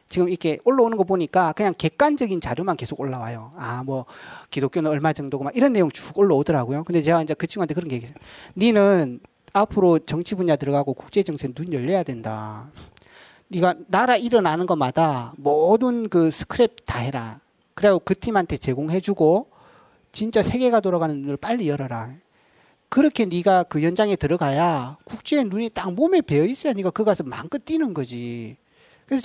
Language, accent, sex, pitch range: Korean, native, male, 145-230 Hz